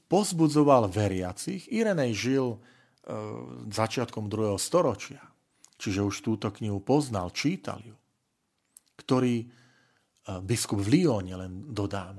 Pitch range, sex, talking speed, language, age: 110-150 Hz, male, 110 wpm, Slovak, 40-59